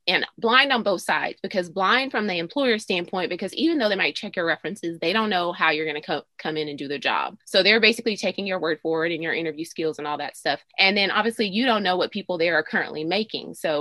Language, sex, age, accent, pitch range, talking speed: English, female, 20-39, American, 165-220 Hz, 265 wpm